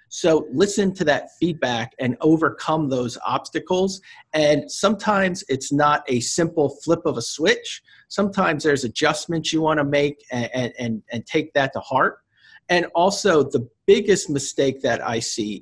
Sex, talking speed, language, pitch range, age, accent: male, 155 wpm, English, 130-160 Hz, 40-59, American